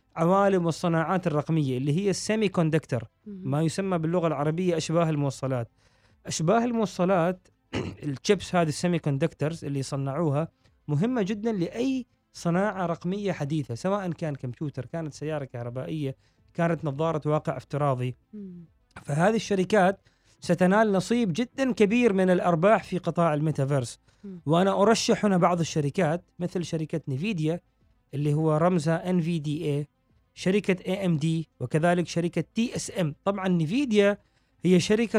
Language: Arabic